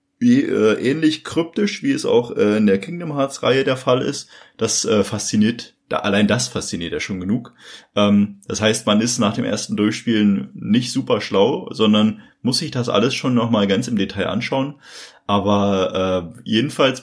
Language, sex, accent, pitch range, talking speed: German, male, German, 100-145 Hz, 185 wpm